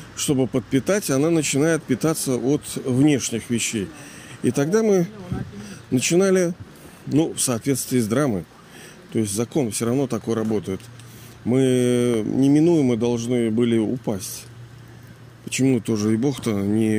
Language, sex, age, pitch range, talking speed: Russian, male, 40-59, 120-165 Hz, 120 wpm